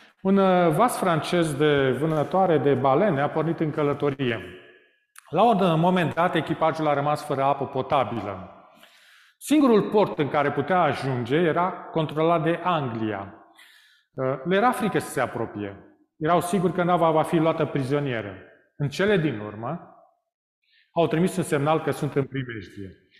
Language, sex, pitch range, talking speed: Romanian, male, 130-180 Hz, 145 wpm